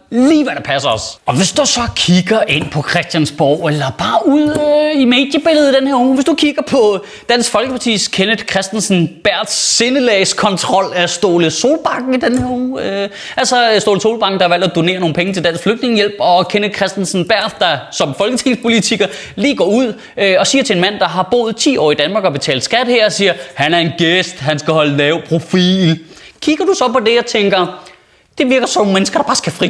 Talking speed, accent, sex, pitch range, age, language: 215 wpm, native, male, 175-245 Hz, 20-39, Danish